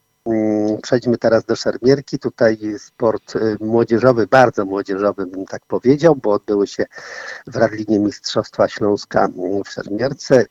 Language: Polish